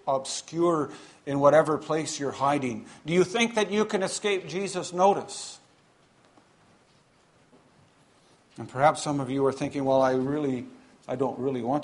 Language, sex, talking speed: English, male, 145 wpm